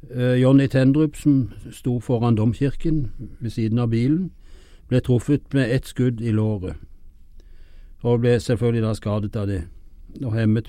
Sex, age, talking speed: male, 60-79, 140 wpm